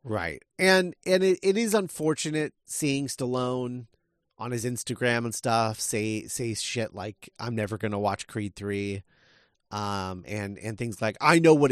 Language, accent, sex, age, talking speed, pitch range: English, American, male, 30-49, 170 wpm, 110-155 Hz